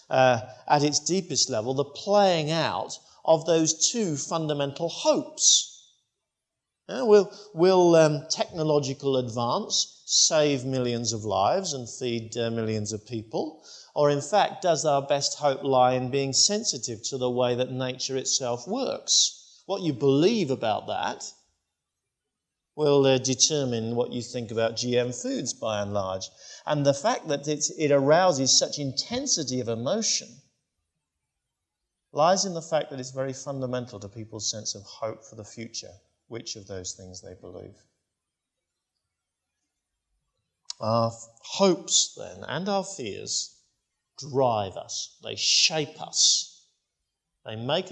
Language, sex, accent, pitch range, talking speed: English, male, British, 120-160 Hz, 135 wpm